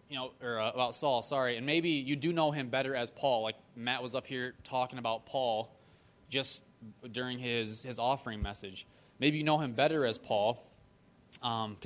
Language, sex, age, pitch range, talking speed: English, male, 20-39, 115-140 Hz, 185 wpm